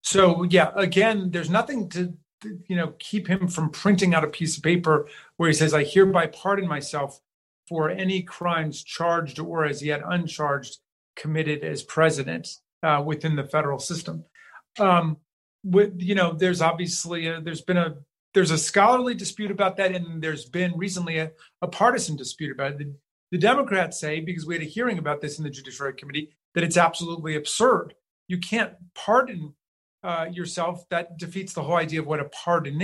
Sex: male